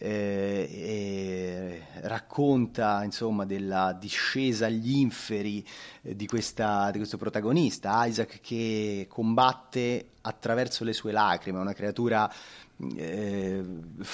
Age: 30-49